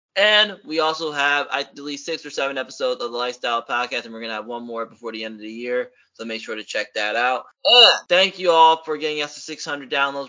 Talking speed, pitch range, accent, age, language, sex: 255 wpm, 120-145 Hz, American, 20-39, English, male